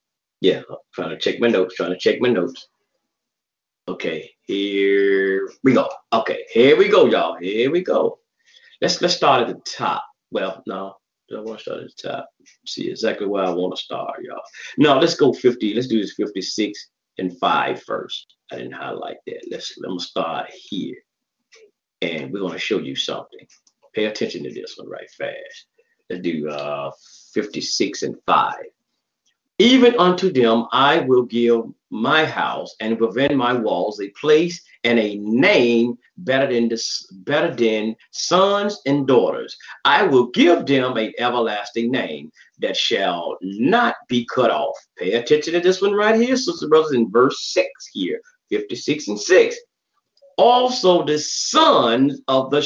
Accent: American